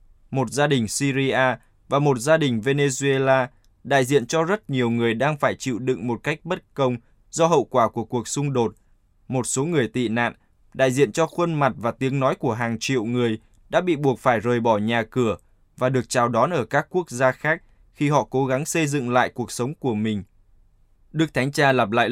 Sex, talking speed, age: male, 215 wpm, 20-39